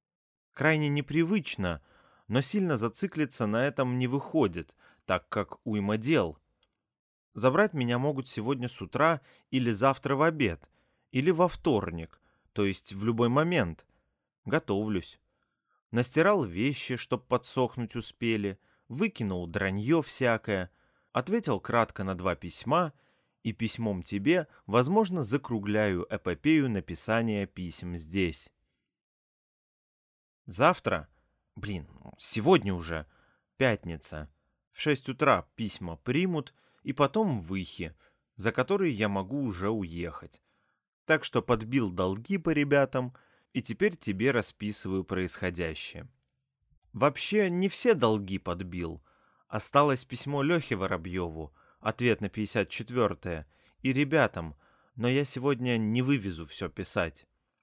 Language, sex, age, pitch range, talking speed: Russian, male, 30-49, 95-140 Hz, 110 wpm